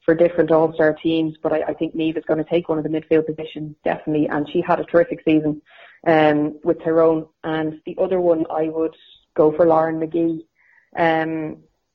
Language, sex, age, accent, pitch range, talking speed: English, female, 30-49, Irish, 155-175 Hz, 200 wpm